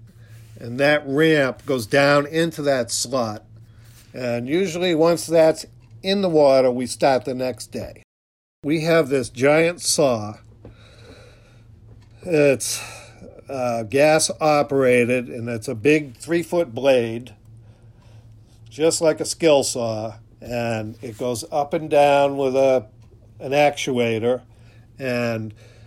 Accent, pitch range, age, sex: American, 115-150 Hz, 50-69, male